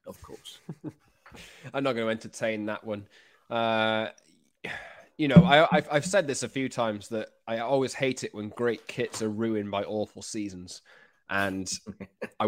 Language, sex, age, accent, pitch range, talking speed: English, male, 20-39, British, 105-130 Hz, 165 wpm